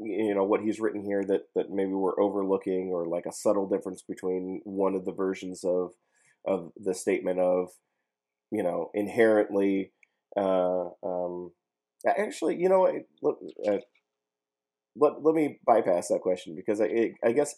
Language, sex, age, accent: English, male, 30-49, American